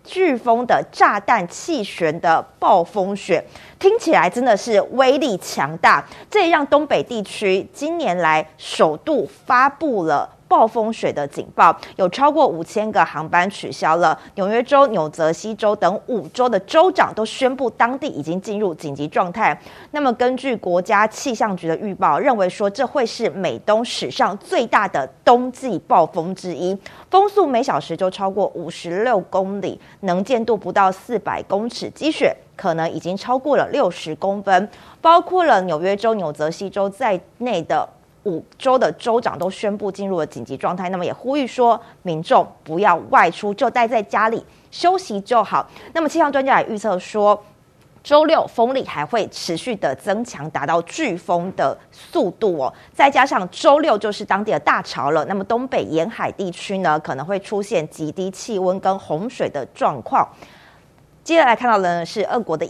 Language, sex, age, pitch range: Chinese, female, 30-49, 180-255 Hz